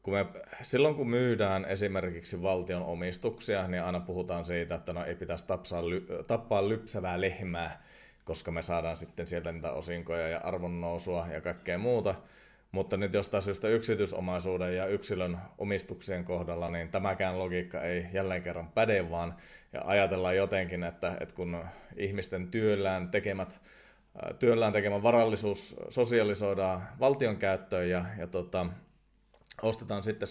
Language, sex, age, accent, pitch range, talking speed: Finnish, male, 30-49, native, 85-100 Hz, 135 wpm